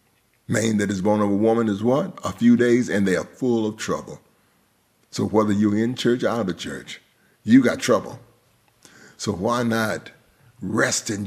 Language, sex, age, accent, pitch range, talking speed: English, male, 50-69, American, 95-115 Hz, 185 wpm